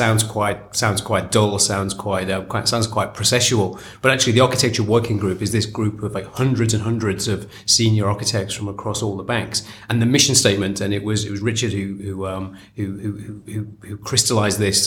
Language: English